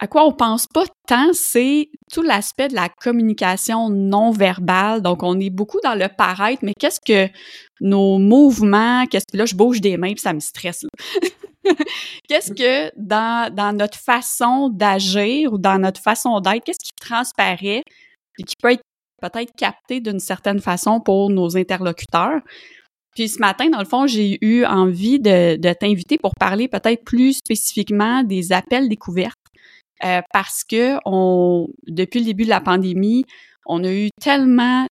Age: 20-39